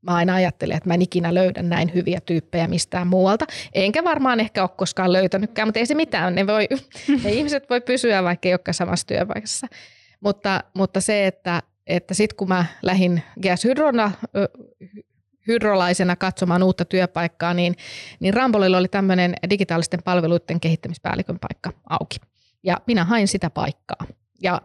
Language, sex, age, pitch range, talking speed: Finnish, female, 20-39, 165-190 Hz, 155 wpm